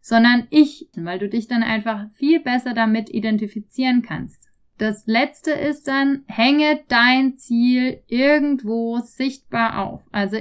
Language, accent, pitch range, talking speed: German, German, 220-260 Hz, 135 wpm